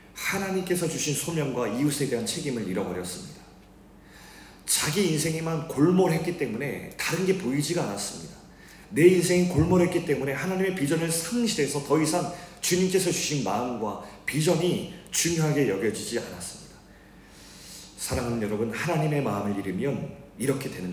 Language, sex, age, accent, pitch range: Korean, male, 40-59, native, 120-170 Hz